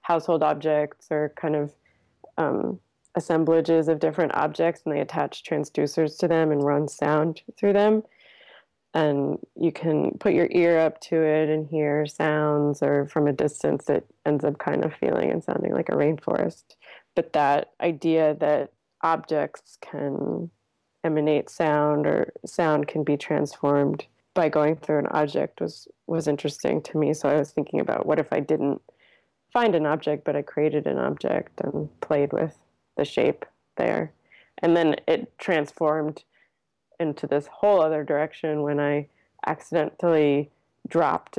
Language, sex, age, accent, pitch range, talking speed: English, female, 20-39, American, 150-165 Hz, 155 wpm